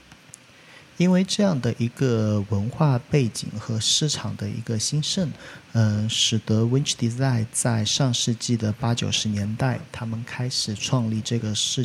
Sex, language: male, Chinese